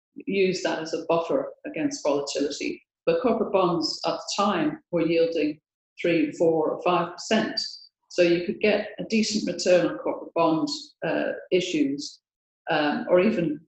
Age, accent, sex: 40-59, British, female